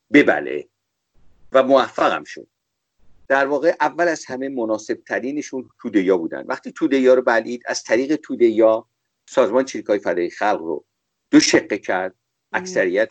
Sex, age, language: male, 50-69, English